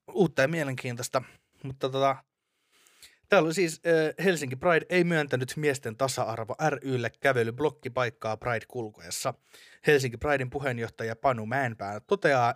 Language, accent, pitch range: Finnish, native, 115-155 Hz